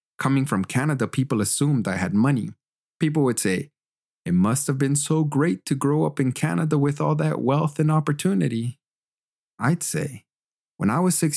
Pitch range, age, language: 105-140 Hz, 30-49, English